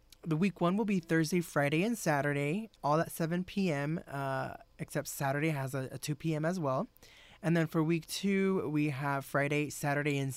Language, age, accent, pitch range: English, 20-39, American, 140-165 Hz